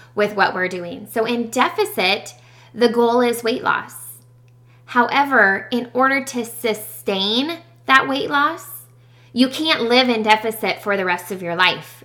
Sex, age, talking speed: female, 20-39, 155 wpm